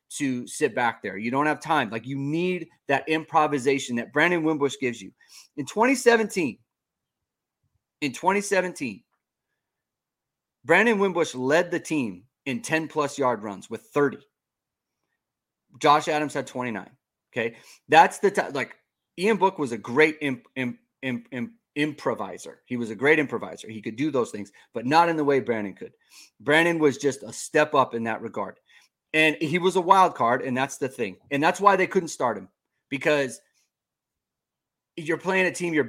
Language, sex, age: English, male, 30-49